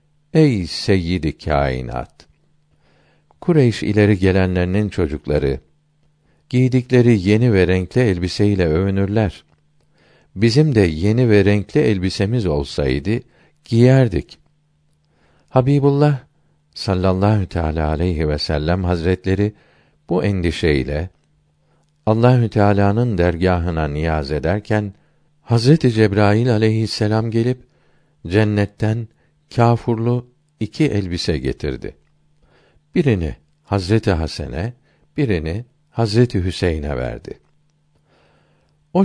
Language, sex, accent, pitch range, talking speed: Turkish, male, native, 85-125 Hz, 80 wpm